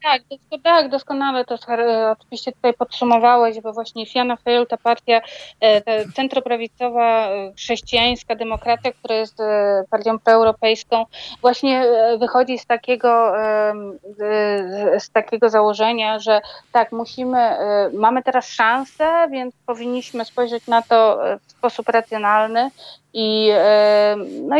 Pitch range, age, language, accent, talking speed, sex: 205-240 Hz, 30-49, Polish, native, 105 wpm, female